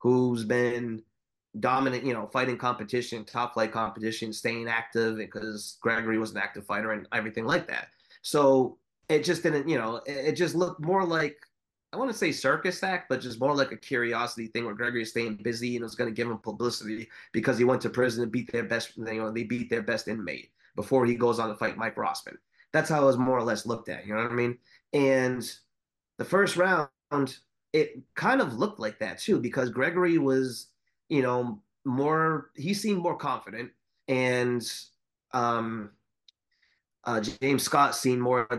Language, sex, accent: English, male, American